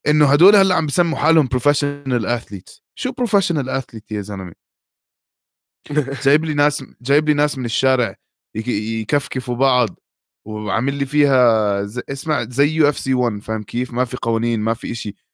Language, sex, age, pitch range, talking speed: Arabic, male, 20-39, 115-150 Hz, 160 wpm